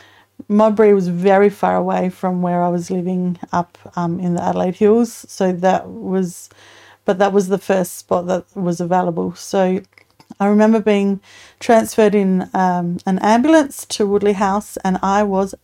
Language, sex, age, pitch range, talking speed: English, female, 40-59, 180-205 Hz, 165 wpm